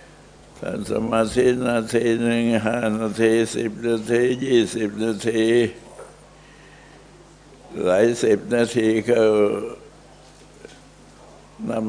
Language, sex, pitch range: Thai, male, 100-115 Hz